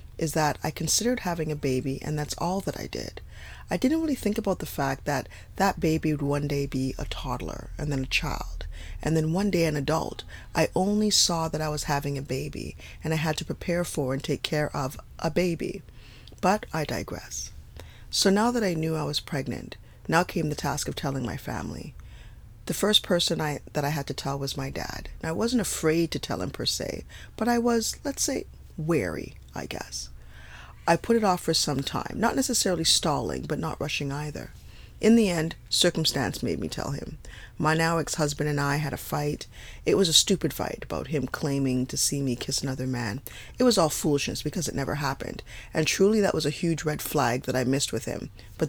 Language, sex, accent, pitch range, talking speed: English, female, American, 135-175 Hz, 210 wpm